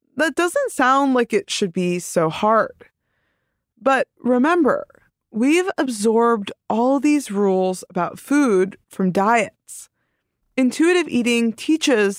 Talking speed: 115 wpm